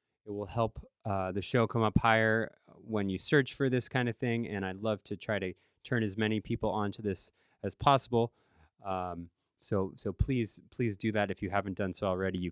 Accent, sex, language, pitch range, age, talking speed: American, male, English, 95-125 Hz, 20-39, 215 wpm